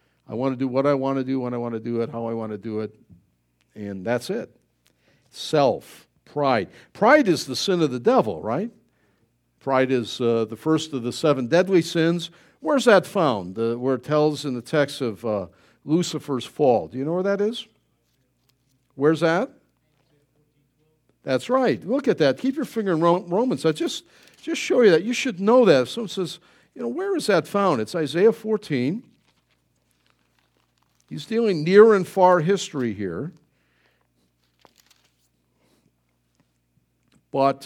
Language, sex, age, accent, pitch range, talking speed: English, male, 50-69, American, 125-180 Hz, 165 wpm